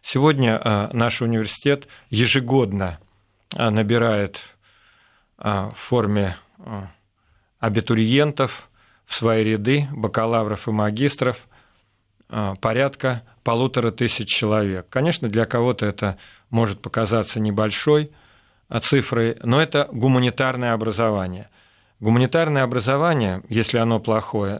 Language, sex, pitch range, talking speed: Russian, male, 105-120 Hz, 85 wpm